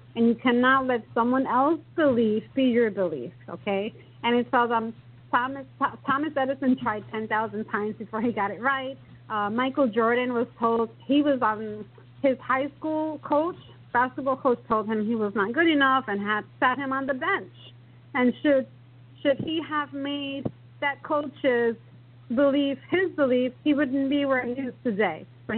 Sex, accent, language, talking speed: female, American, English, 170 wpm